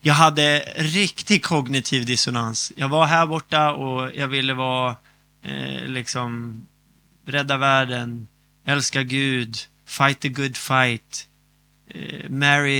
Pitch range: 130-170 Hz